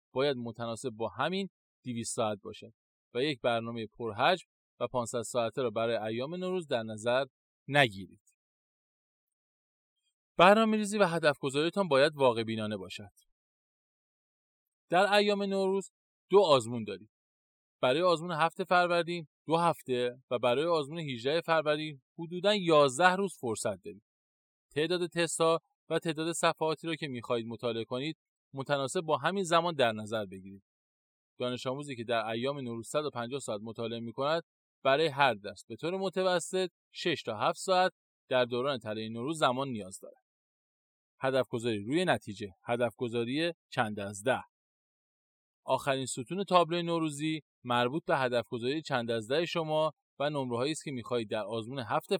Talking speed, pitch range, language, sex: 140 wpm, 115-165 Hz, Persian, male